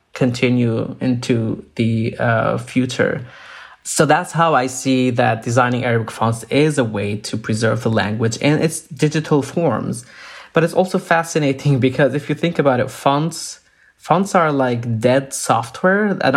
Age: 20-39